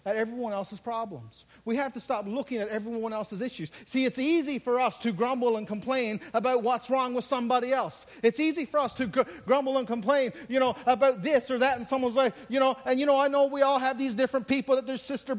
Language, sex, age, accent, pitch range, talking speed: English, male, 50-69, American, 225-280 Hz, 240 wpm